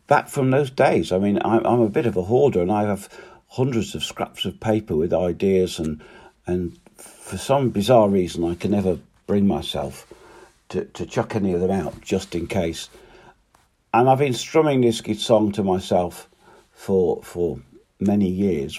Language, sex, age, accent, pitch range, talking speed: English, male, 50-69, British, 90-115 Hz, 175 wpm